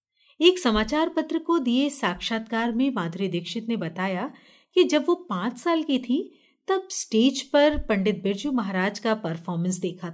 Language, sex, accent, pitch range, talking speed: Hindi, female, native, 190-290 Hz, 160 wpm